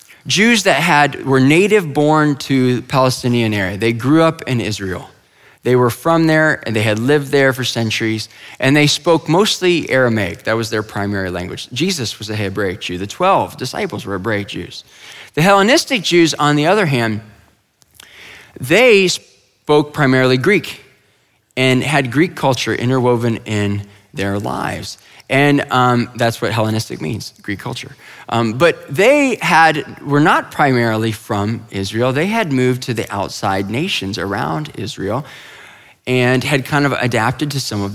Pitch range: 105-145 Hz